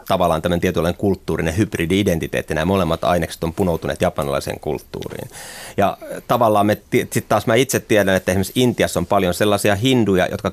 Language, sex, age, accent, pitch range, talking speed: Finnish, male, 30-49, native, 85-105 Hz, 155 wpm